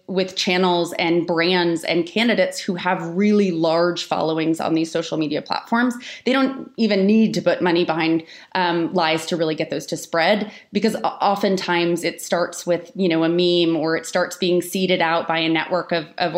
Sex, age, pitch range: female, 20-39, 165-200 Hz